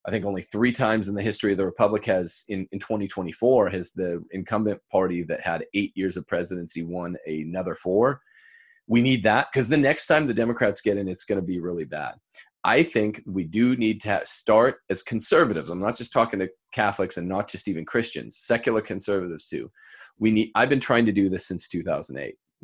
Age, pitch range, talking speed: 30-49, 95-115 Hz, 205 wpm